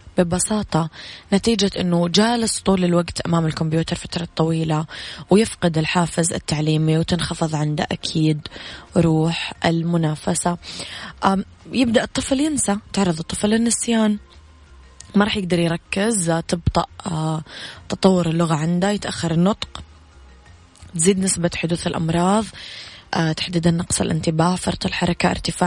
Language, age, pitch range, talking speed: Arabic, 20-39, 160-190 Hz, 105 wpm